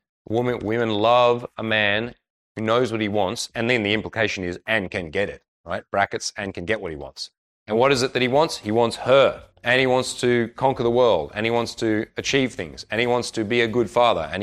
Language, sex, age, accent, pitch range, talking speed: English, male, 30-49, Australian, 100-120 Hz, 245 wpm